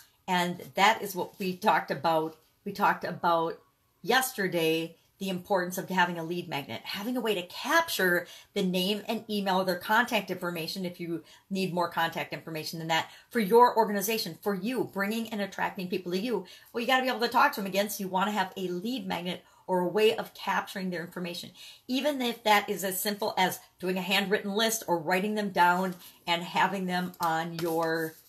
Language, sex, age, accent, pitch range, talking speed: English, female, 50-69, American, 175-220 Hz, 200 wpm